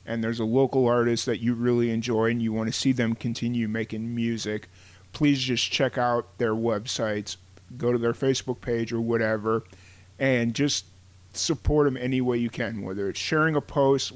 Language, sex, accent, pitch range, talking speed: English, male, American, 95-130 Hz, 185 wpm